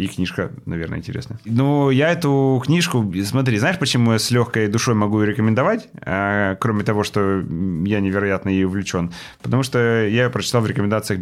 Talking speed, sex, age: 170 wpm, male, 30-49